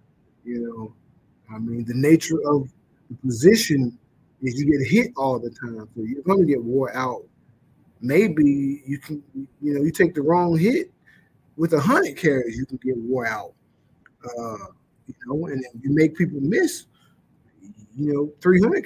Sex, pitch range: male, 125-155 Hz